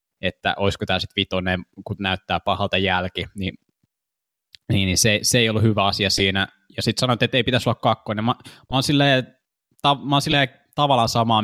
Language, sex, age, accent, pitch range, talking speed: Finnish, male, 20-39, native, 95-115 Hz, 195 wpm